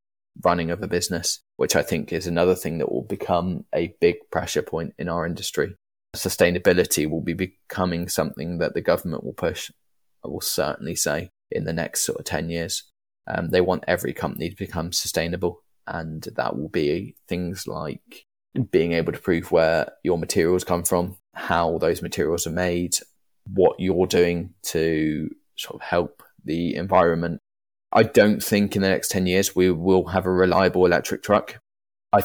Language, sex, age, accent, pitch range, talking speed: English, male, 20-39, British, 85-95 Hz, 175 wpm